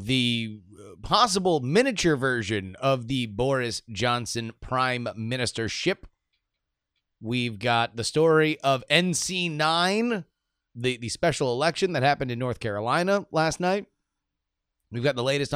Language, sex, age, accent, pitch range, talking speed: English, male, 30-49, American, 115-175 Hz, 120 wpm